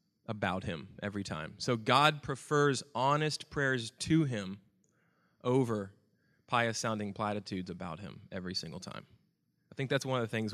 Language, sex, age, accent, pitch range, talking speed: English, male, 20-39, American, 120-150 Hz, 150 wpm